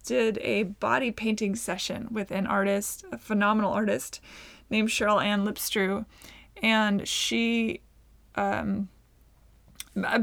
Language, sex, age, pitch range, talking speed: English, female, 20-39, 195-225 Hz, 105 wpm